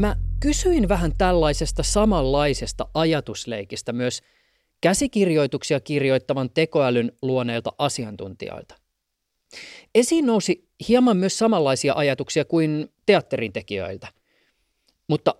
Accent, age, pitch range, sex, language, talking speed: native, 30-49, 115-160 Hz, male, Finnish, 85 wpm